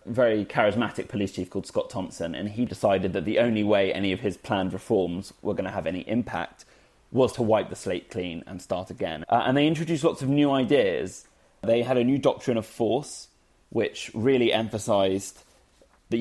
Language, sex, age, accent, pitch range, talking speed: English, male, 20-39, British, 100-135 Hz, 195 wpm